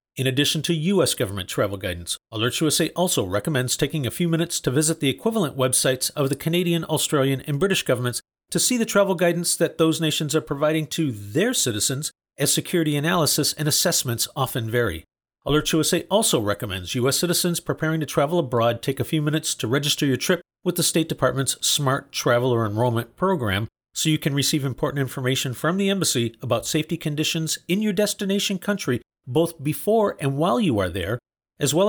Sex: male